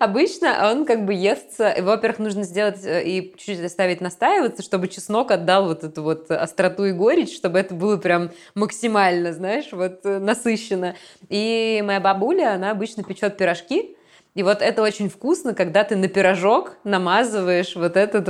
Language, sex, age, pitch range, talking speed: Russian, female, 20-39, 165-200 Hz, 155 wpm